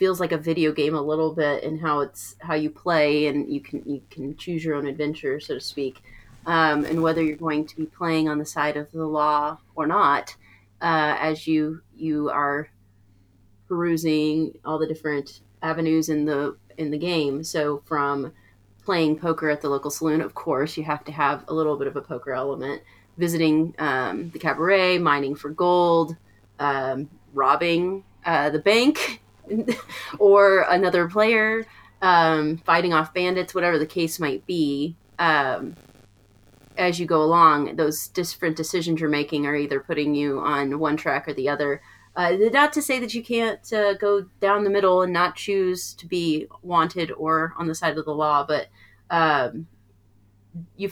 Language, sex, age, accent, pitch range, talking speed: English, female, 30-49, American, 145-170 Hz, 175 wpm